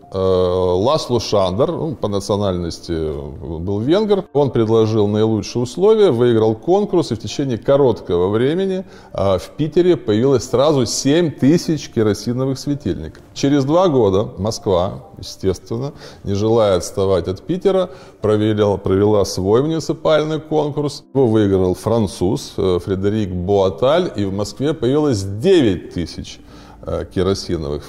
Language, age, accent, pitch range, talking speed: Russian, 20-39, native, 95-135 Hz, 110 wpm